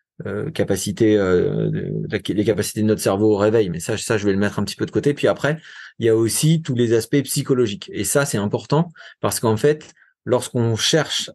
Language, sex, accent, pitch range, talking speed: French, male, French, 105-130 Hz, 225 wpm